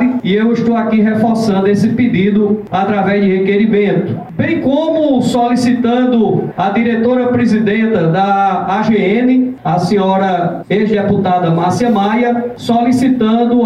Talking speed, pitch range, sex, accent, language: 105 wpm, 200-240 Hz, male, Brazilian, Portuguese